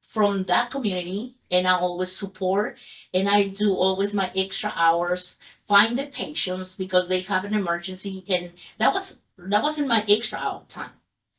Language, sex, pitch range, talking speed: English, female, 180-215 Hz, 165 wpm